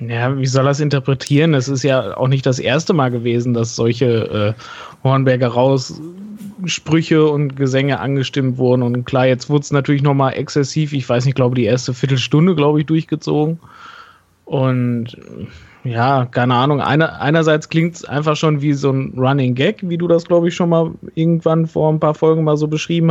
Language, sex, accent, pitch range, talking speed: German, male, German, 130-160 Hz, 190 wpm